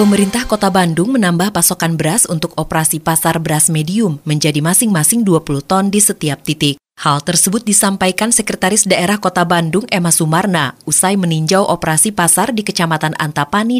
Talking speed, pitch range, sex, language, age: 150 wpm, 155-195 Hz, female, Indonesian, 30-49